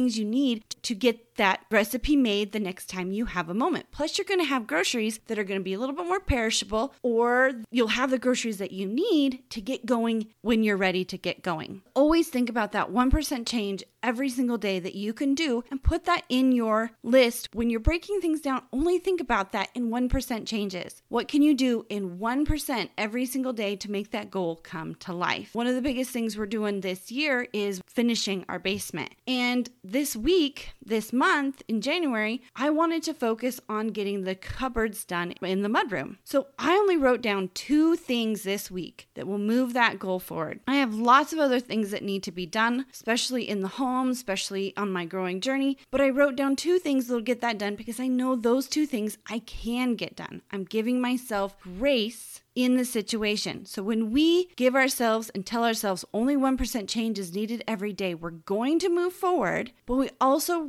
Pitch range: 205-265 Hz